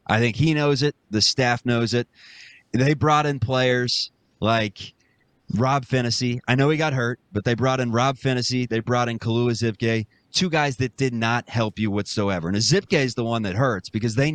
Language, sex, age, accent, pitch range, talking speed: English, male, 30-49, American, 115-145 Hz, 205 wpm